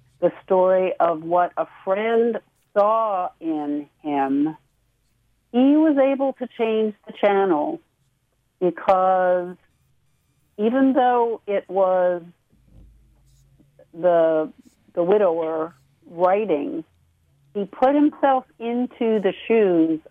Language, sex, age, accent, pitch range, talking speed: English, female, 50-69, American, 160-220 Hz, 95 wpm